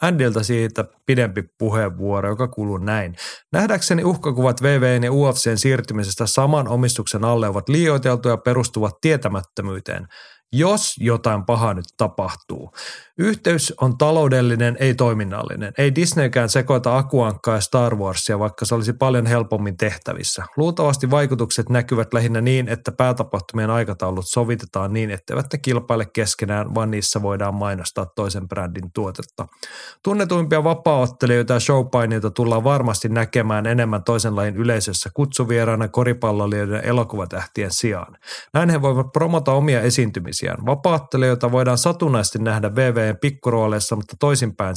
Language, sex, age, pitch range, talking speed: Finnish, male, 30-49, 105-130 Hz, 125 wpm